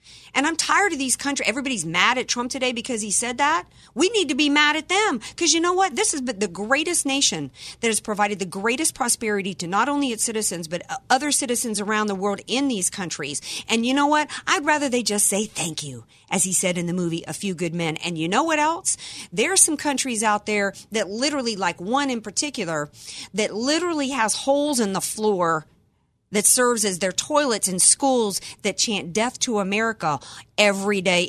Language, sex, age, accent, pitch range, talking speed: English, female, 40-59, American, 185-260 Hz, 210 wpm